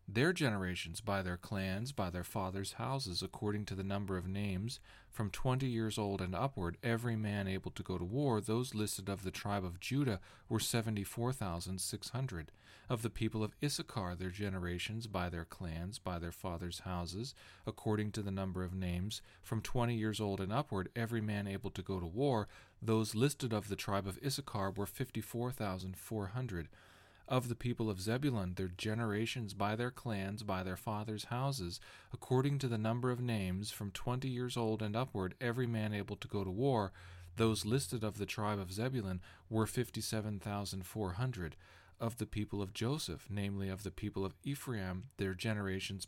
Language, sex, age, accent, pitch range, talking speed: English, male, 40-59, American, 95-115 Hz, 190 wpm